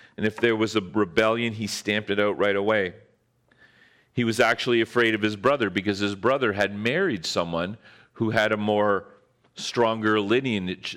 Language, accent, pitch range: English, American, 105-135 Hz